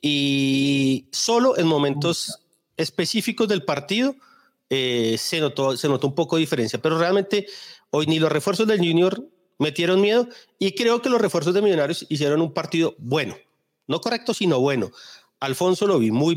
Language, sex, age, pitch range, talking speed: Spanish, male, 40-59, 130-175 Hz, 165 wpm